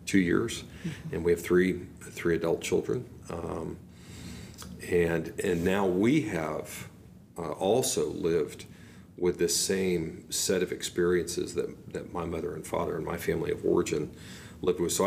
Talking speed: 150 wpm